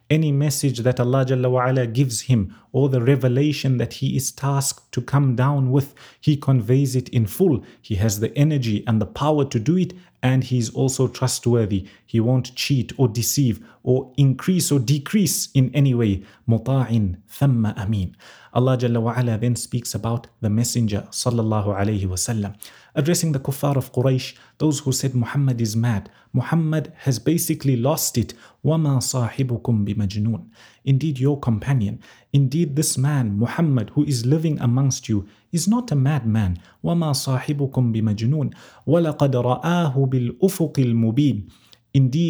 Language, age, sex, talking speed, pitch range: English, 30-49, male, 140 wpm, 115-145 Hz